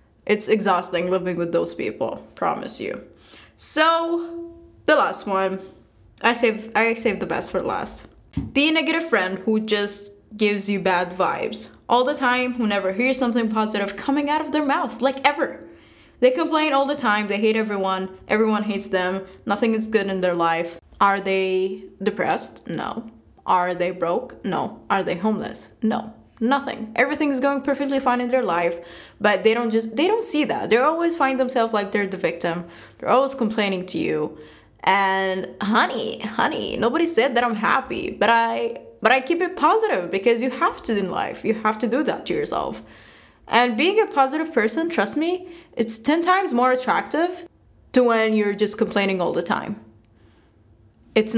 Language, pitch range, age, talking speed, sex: English, 190-270 Hz, 20-39, 180 wpm, female